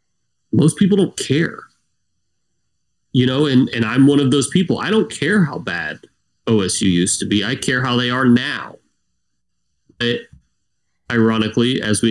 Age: 30-49